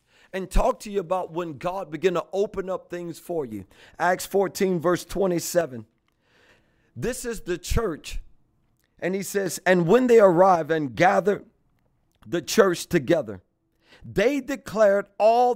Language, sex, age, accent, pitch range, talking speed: English, male, 40-59, American, 175-235 Hz, 145 wpm